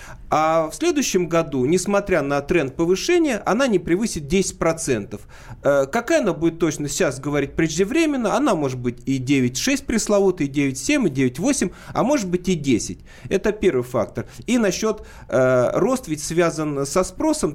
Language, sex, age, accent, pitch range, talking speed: Russian, male, 40-59, native, 140-190 Hz, 155 wpm